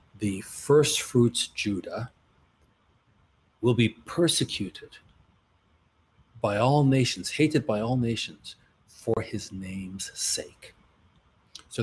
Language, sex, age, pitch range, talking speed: English, male, 40-59, 100-130 Hz, 95 wpm